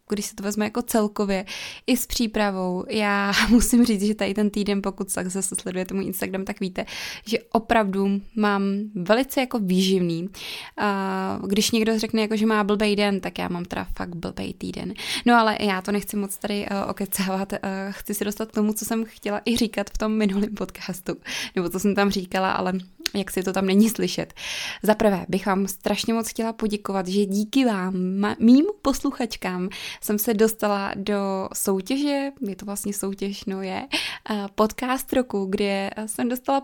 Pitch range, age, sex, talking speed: 200-235 Hz, 20-39, female, 175 wpm